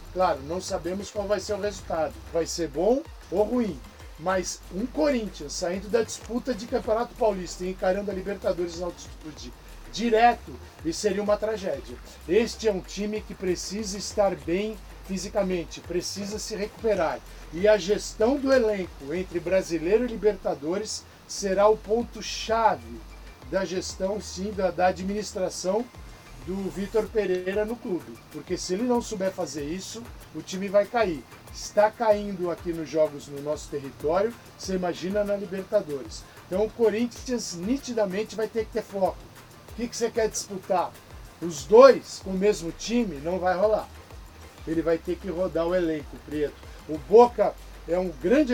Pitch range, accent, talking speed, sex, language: 170-215 Hz, Brazilian, 155 wpm, male, Portuguese